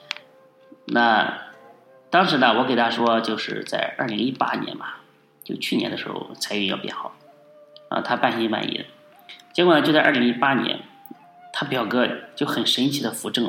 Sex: male